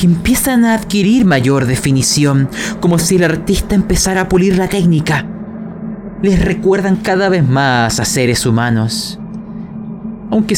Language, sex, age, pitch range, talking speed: Spanish, male, 30-49, 145-205 Hz, 135 wpm